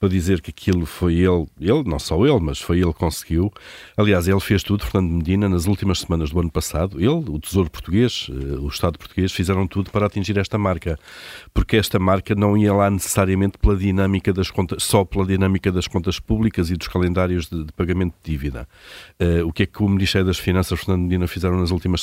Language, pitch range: Portuguese, 85-100 Hz